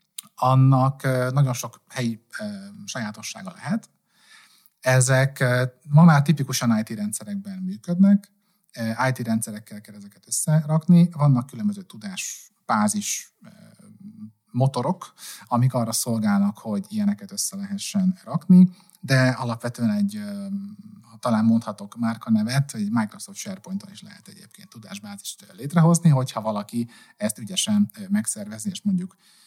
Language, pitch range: Hungarian, 130-200 Hz